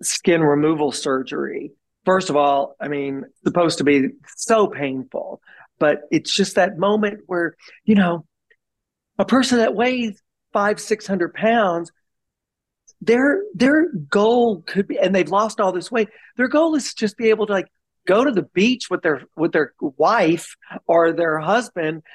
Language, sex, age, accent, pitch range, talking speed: English, male, 40-59, American, 160-210 Hz, 165 wpm